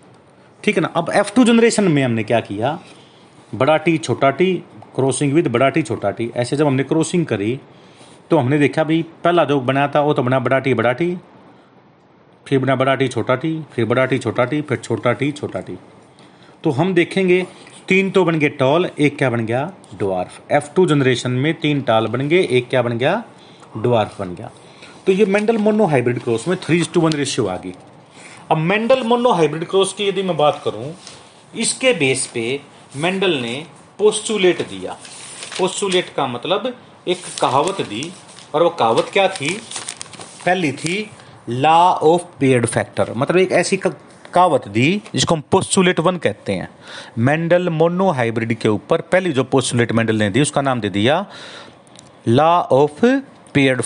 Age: 40-59